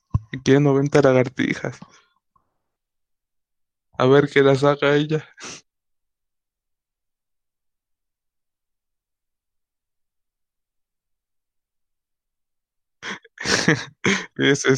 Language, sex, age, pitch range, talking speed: Spanish, male, 20-39, 90-130 Hz, 40 wpm